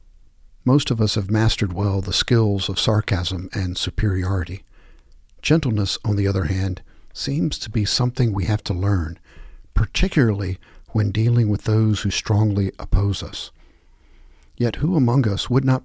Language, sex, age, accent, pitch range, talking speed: English, male, 50-69, American, 85-115 Hz, 150 wpm